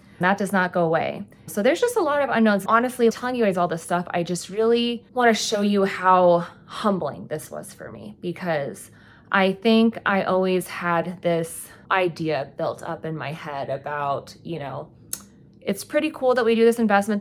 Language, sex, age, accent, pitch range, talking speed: English, female, 20-39, American, 165-205 Hz, 190 wpm